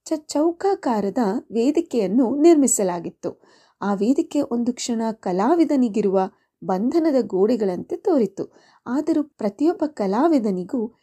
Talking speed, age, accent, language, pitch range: 75 wpm, 30-49, native, Kannada, 205-295 Hz